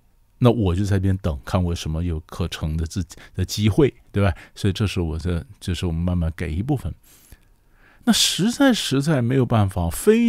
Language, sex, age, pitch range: Chinese, male, 50-69, 90-125 Hz